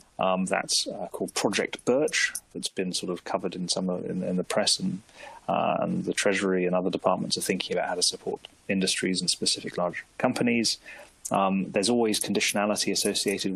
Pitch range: 90-100 Hz